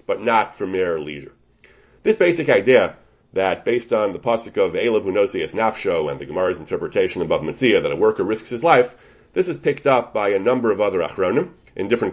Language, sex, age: English, male, 40-59